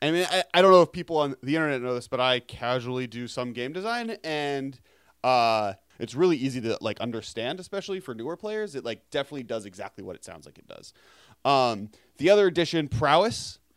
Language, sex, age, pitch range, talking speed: English, male, 30-49, 120-160 Hz, 210 wpm